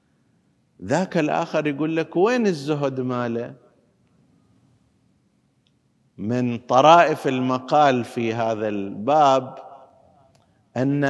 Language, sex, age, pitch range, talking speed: Arabic, male, 50-69, 140-185 Hz, 75 wpm